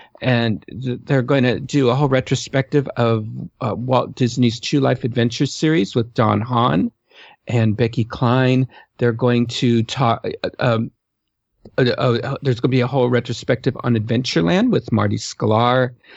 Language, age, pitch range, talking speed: English, 50-69, 120-145 Hz, 155 wpm